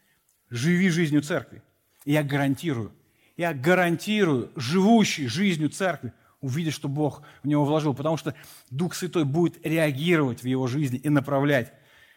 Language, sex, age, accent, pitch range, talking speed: Russian, male, 40-59, native, 125-165 Hz, 140 wpm